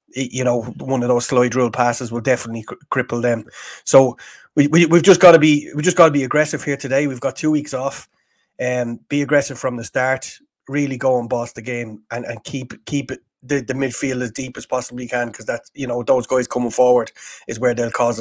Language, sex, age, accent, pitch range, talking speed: English, male, 30-49, Irish, 125-140 Hz, 235 wpm